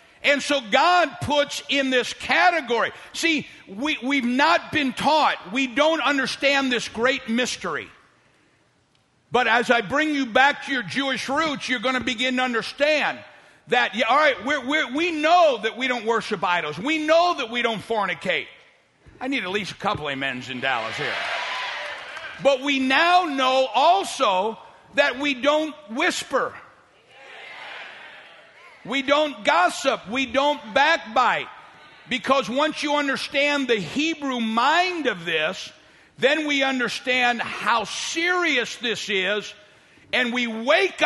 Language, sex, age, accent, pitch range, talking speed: English, male, 50-69, American, 235-295 Hz, 145 wpm